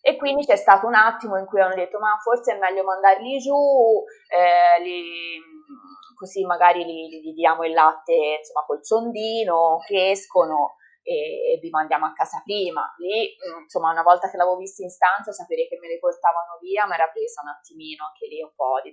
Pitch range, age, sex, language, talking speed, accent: 170-280 Hz, 20-39, female, Italian, 190 wpm, native